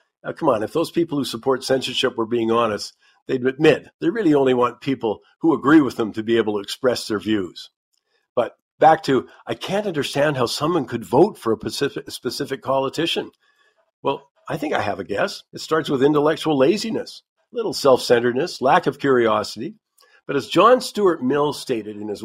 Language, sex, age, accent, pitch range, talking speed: English, male, 50-69, American, 115-145 Hz, 190 wpm